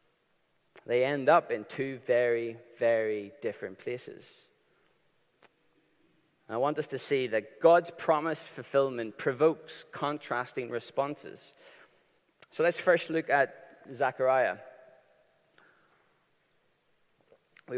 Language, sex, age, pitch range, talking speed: English, male, 30-49, 135-185 Hz, 95 wpm